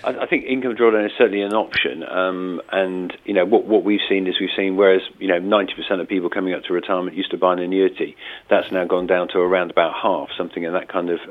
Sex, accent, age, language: male, British, 40-59, English